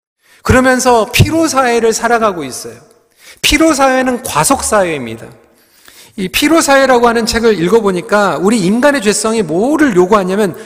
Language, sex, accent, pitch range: Korean, male, native, 170-235 Hz